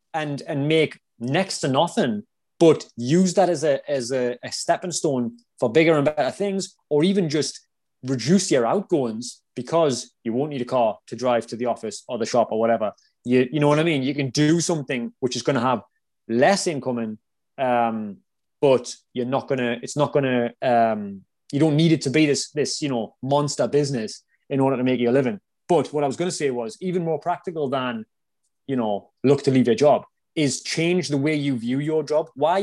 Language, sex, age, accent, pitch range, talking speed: English, male, 20-39, British, 130-175 Hz, 220 wpm